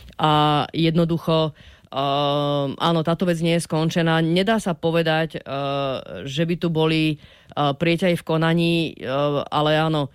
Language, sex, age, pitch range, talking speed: Czech, female, 30-49, 150-165 Hz, 140 wpm